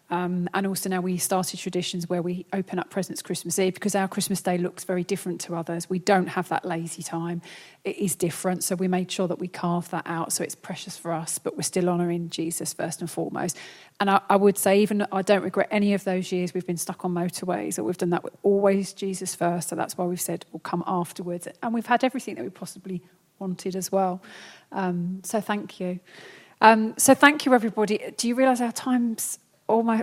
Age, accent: 30-49, British